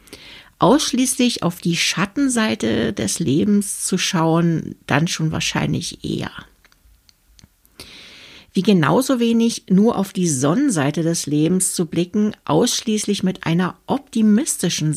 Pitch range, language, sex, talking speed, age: 160-210 Hz, German, female, 110 wpm, 60-79